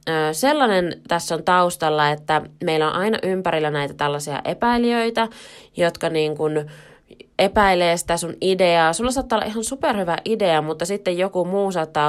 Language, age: Finnish, 20-39